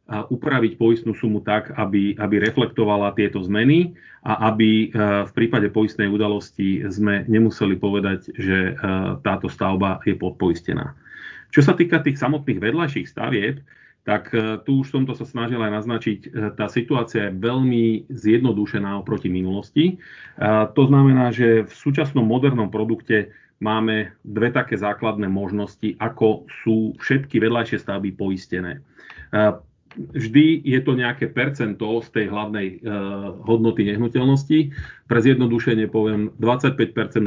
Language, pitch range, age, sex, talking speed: Slovak, 105-120 Hz, 40-59, male, 125 wpm